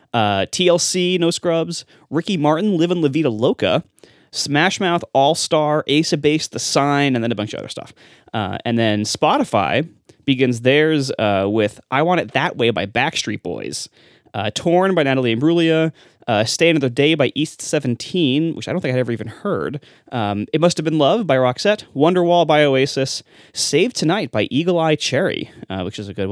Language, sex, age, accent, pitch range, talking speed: English, male, 20-39, American, 120-170 Hz, 190 wpm